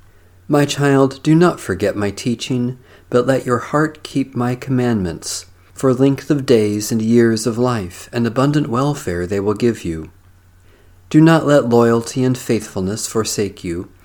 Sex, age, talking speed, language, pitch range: male, 40-59, 160 wpm, English, 95-130 Hz